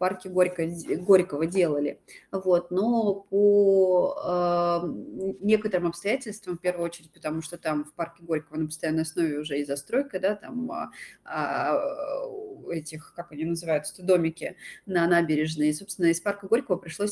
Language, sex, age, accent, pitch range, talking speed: Russian, female, 30-49, native, 170-205 Hz, 135 wpm